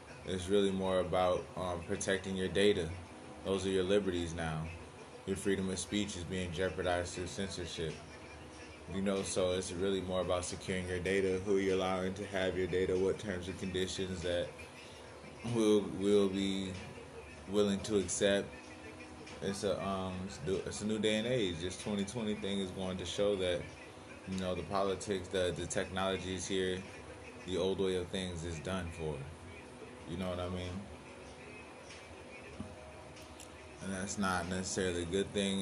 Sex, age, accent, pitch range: male, 20-39, American, 85-95 Hz